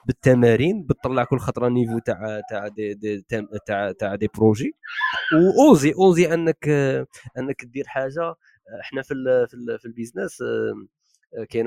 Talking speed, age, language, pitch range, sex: 140 wpm, 20-39, Arabic, 110-160 Hz, male